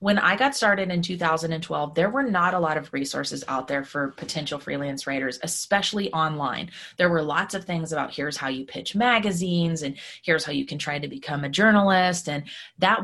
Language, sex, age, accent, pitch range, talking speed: English, female, 20-39, American, 145-175 Hz, 205 wpm